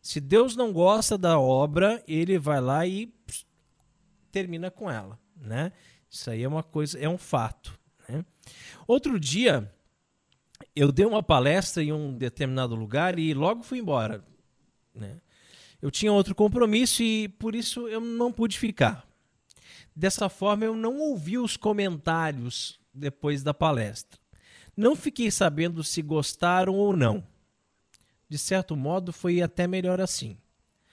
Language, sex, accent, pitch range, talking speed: Portuguese, male, Brazilian, 145-220 Hz, 145 wpm